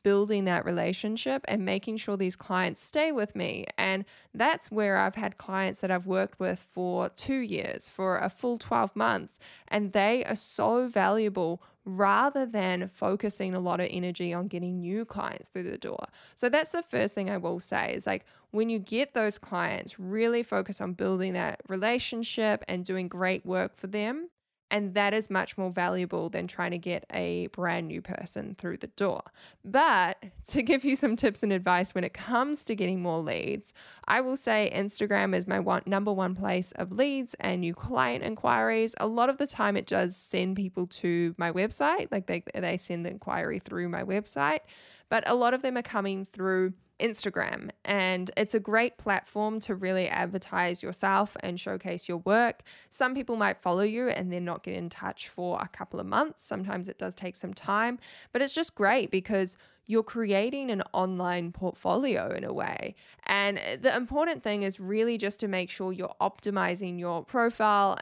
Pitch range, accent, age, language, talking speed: 180-225 Hz, Australian, 10-29, English, 190 wpm